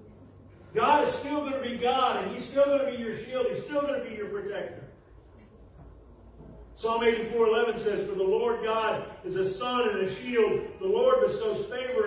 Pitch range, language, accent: 195-295 Hz, English, American